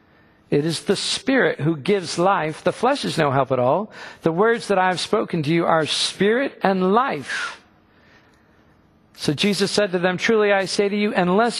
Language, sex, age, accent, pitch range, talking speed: English, male, 50-69, American, 150-200 Hz, 190 wpm